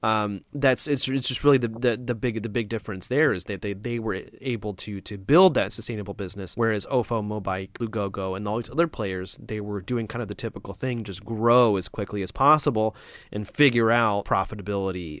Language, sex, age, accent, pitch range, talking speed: English, male, 30-49, American, 110-135 Hz, 210 wpm